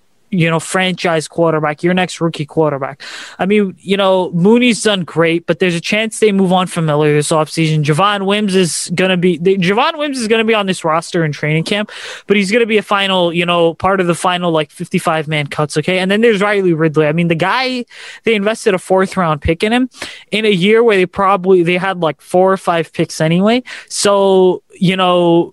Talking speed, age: 220 wpm, 20-39